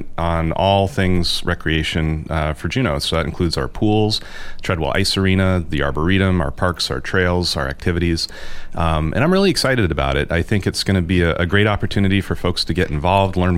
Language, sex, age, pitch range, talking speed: English, male, 30-49, 80-95 Hz, 205 wpm